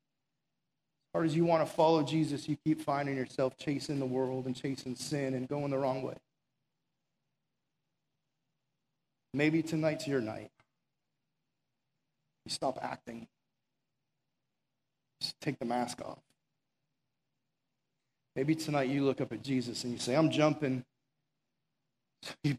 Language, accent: English, American